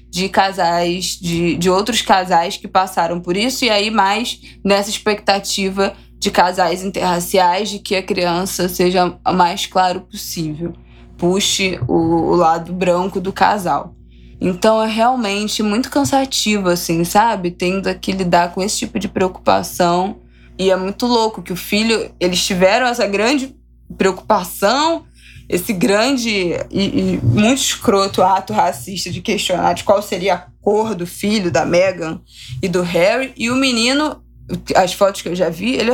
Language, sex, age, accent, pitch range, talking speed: Portuguese, female, 20-39, Brazilian, 170-205 Hz, 155 wpm